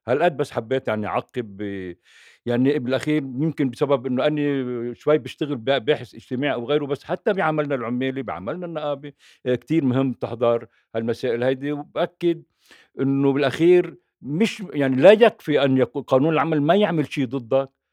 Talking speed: 140 wpm